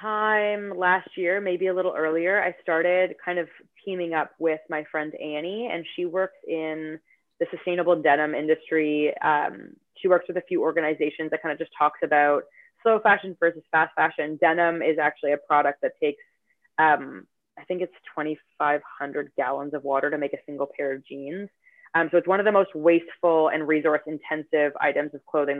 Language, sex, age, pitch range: English, female, 20-39, 150-180 Hz